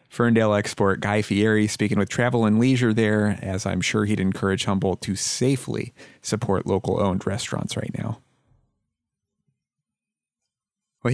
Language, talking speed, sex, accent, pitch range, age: English, 130 wpm, male, American, 100-120 Hz, 30-49